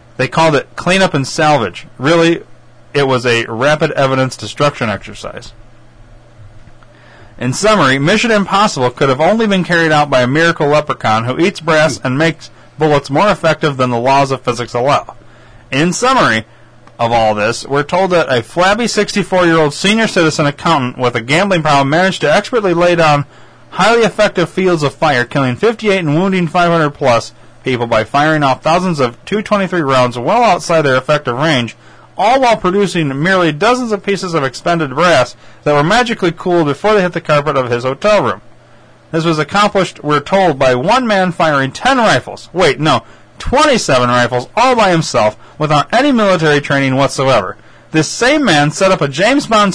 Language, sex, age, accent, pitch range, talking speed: English, male, 30-49, American, 130-185 Hz, 170 wpm